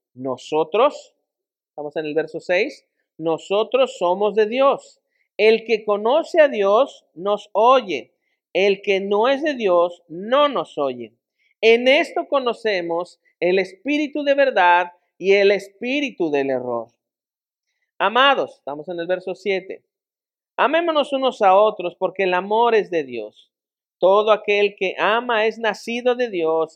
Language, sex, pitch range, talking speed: Spanish, male, 175-250 Hz, 140 wpm